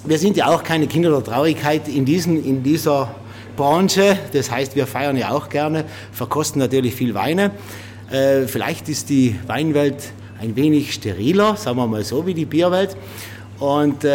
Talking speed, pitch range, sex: 165 wpm, 115-160 Hz, male